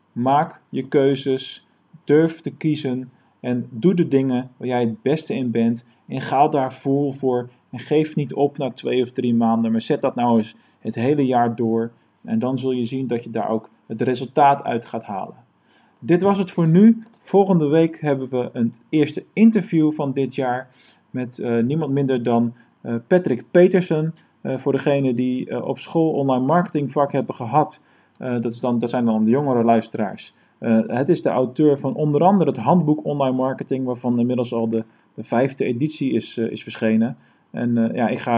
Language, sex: Dutch, male